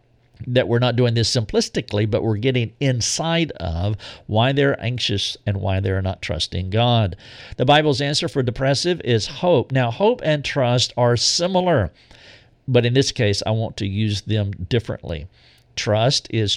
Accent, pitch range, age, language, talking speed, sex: American, 110-140 Hz, 50-69, English, 165 wpm, male